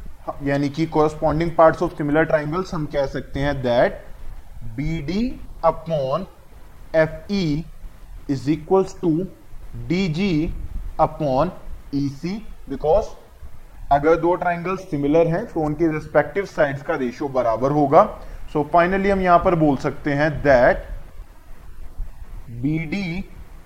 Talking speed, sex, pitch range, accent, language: 125 wpm, male, 130-170 Hz, native, Hindi